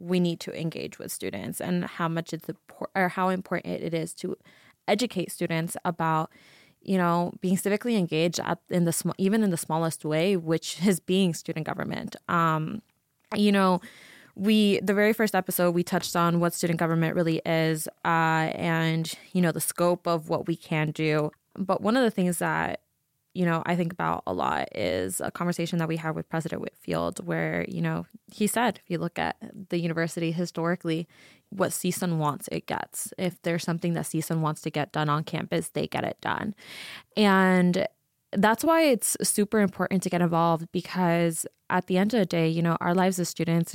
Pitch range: 165-185 Hz